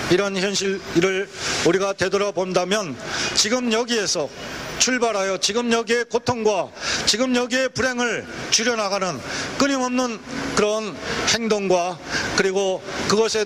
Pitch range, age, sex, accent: 195-235 Hz, 40-59, male, native